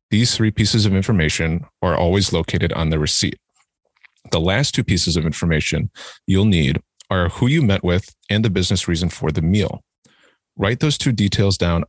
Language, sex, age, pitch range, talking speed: English, male, 30-49, 85-115 Hz, 180 wpm